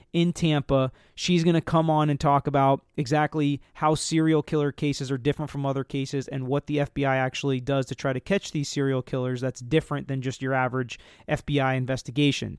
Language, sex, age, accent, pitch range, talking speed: English, male, 30-49, American, 135-150 Hz, 195 wpm